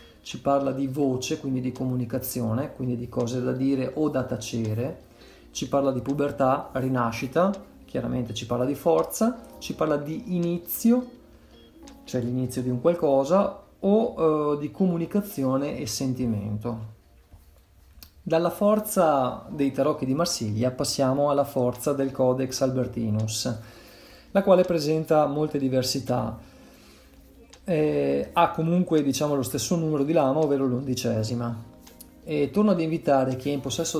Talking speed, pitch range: 135 wpm, 125-160 Hz